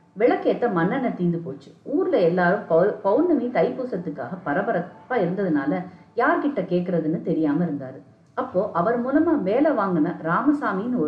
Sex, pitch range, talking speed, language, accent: female, 160-255 Hz, 115 wpm, Tamil, native